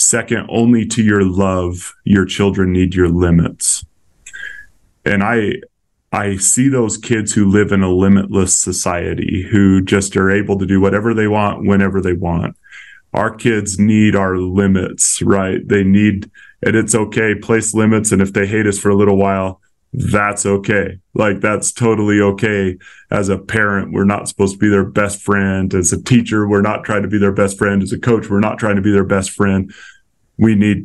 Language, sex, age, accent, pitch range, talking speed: English, male, 30-49, American, 95-105 Hz, 190 wpm